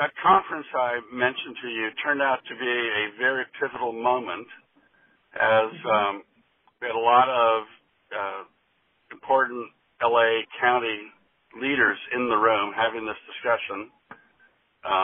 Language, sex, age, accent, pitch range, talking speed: English, male, 60-79, American, 110-145 Hz, 130 wpm